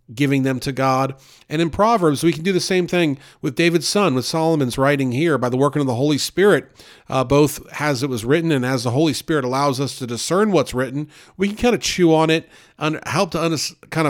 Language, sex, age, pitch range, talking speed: English, male, 40-59, 130-160 Hz, 235 wpm